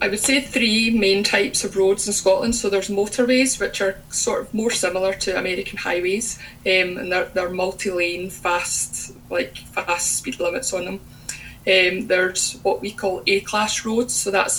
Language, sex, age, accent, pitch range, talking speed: English, female, 20-39, British, 185-215 Hz, 180 wpm